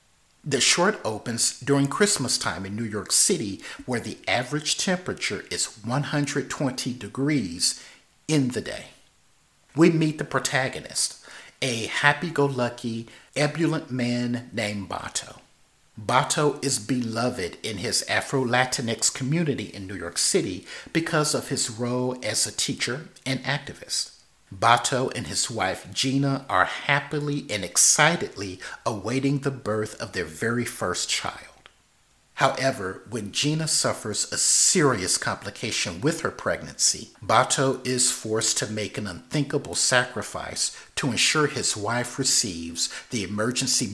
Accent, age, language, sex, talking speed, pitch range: American, 50-69, English, male, 125 wpm, 110-140 Hz